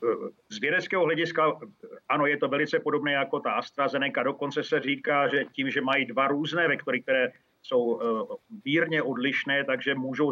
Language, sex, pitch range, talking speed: Czech, male, 130-155 Hz, 155 wpm